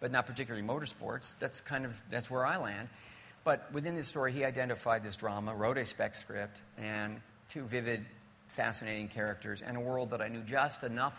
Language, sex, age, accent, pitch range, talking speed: English, male, 50-69, American, 110-130 Hz, 195 wpm